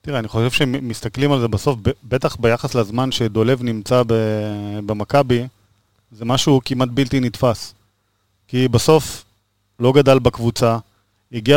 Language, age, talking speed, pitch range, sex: Hebrew, 30-49, 125 wpm, 115-155 Hz, male